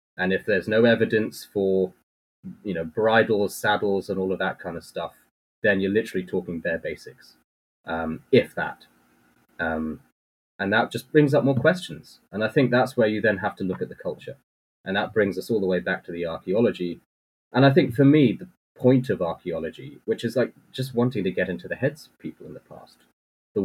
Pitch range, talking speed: 90-115 Hz, 210 wpm